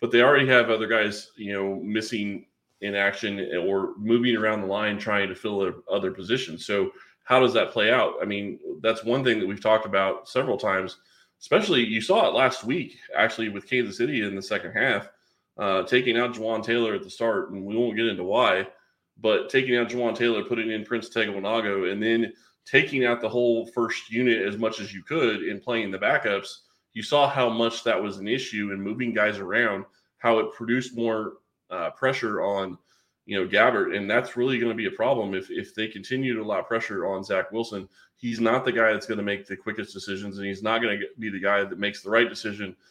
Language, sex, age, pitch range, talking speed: English, male, 20-39, 100-120 Hz, 220 wpm